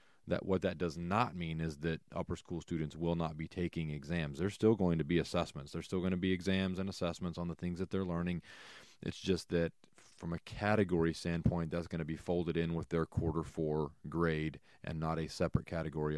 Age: 30-49